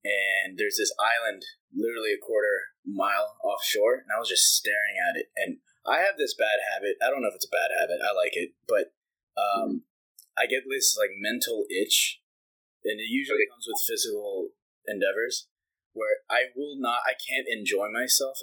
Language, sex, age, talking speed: English, male, 20-39, 180 wpm